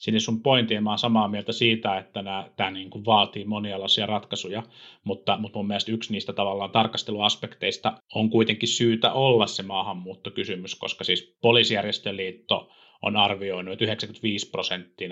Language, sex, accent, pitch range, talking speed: Finnish, male, native, 95-120 Hz, 130 wpm